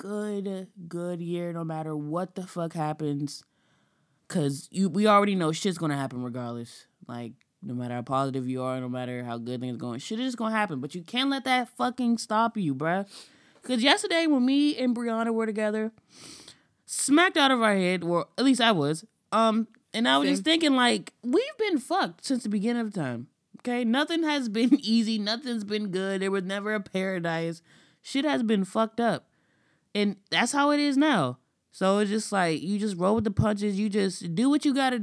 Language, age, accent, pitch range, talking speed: English, 20-39, American, 150-230 Hz, 205 wpm